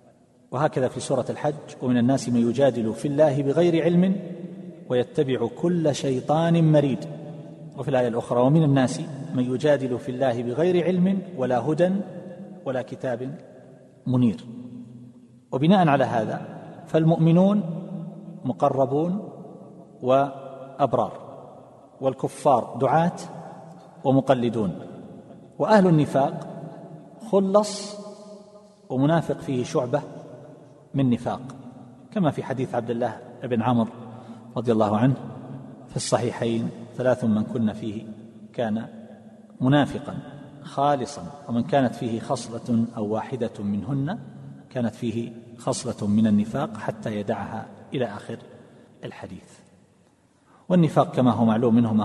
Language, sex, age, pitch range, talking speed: Arabic, male, 40-59, 120-155 Hz, 105 wpm